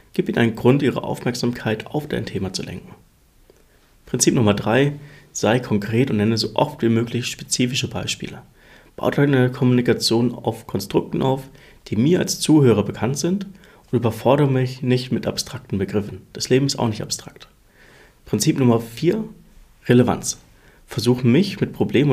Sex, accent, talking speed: male, German, 155 wpm